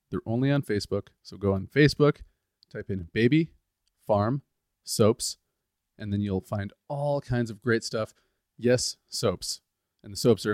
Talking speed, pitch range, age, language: 155 wpm, 100-135 Hz, 30-49, English